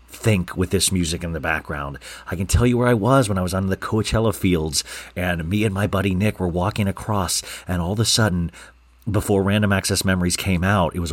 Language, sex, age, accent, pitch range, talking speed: English, male, 40-59, American, 85-105 Hz, 230 wpm